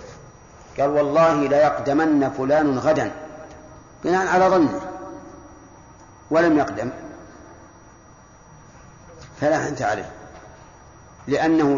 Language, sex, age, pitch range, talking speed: Arabic, male, 50-69, 140-170 Hz, 70 wpm